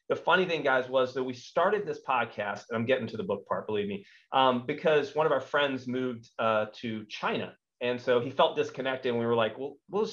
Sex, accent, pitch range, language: male, American, 125-200 Hz, English